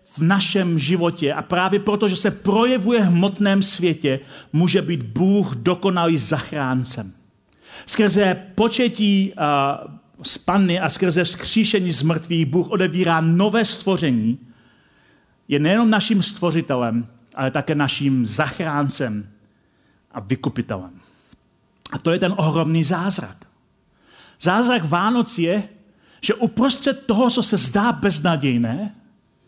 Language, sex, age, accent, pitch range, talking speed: Czech, male, 40-59, native, 140-200 Hz, 115 wpm